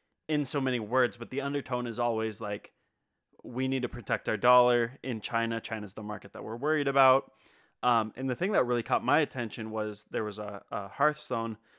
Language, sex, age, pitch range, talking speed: English, male, 20-39, 110-130 Hz, 205 wpm